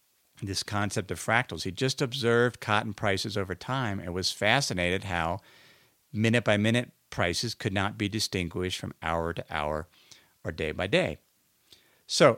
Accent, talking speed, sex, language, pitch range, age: American, 125 wpm, male, English, 95-125 Hz, 50-69